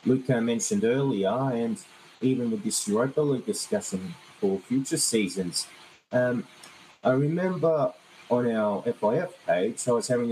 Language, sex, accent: English, male, Australian